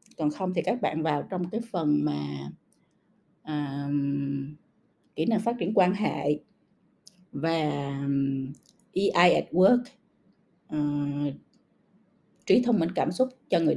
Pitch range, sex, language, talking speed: 150-220 Hz, female, Vietnamese, 120 wpm